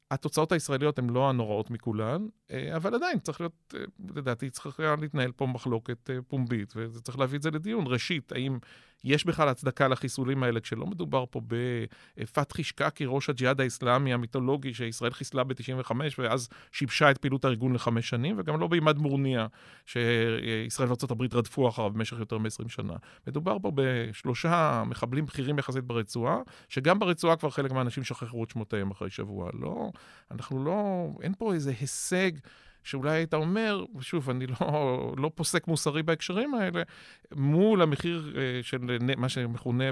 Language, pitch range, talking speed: Hebrew, 125-165 Hz, 150 wpm